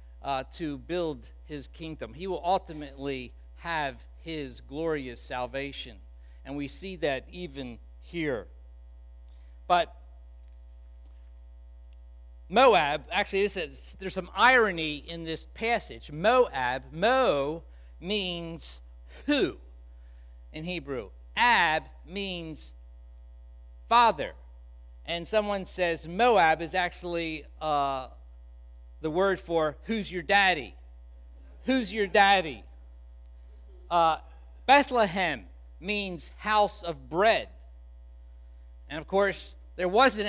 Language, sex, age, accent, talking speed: English, male, 50-69, American, 95 wpm